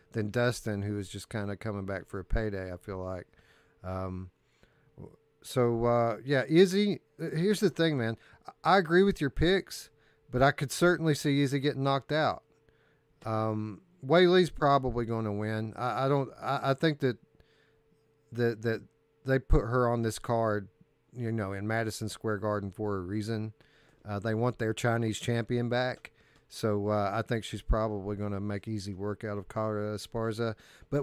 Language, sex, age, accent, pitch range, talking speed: English, male, 40-59, American, 110-145 Hz, 175 wpm